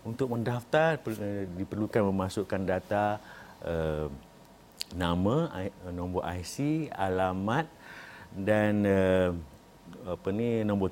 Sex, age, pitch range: male, 50-69, 95-125 Hz